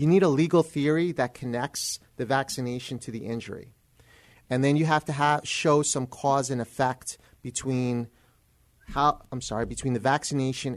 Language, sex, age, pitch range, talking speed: English, male, 30-49, 120-150 Hz, 165 wpm